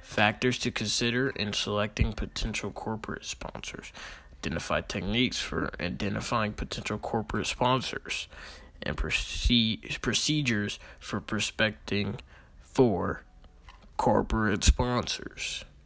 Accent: American